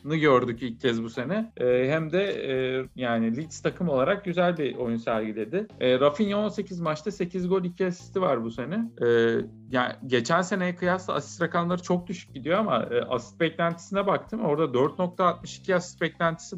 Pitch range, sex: 125-170 Hz, male